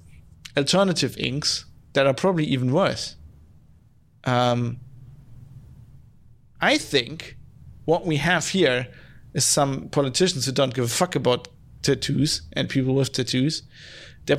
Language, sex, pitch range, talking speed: English, male, 130-150 Hz, 120 wpm